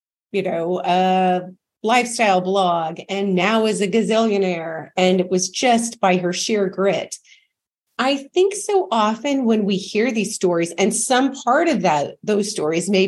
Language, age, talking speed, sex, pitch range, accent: English, 40-59, 165 wpm, female, 185-235 Hz, American